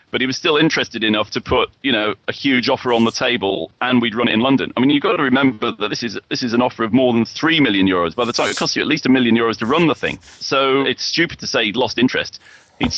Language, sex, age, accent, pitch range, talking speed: English, male, 30-49, British, 105-135 Hz, 300 wpm